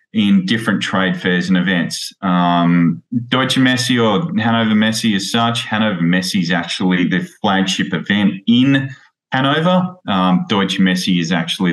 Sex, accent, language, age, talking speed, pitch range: male, Australian, English, 20-39, 145 wpm, 90-115 Hz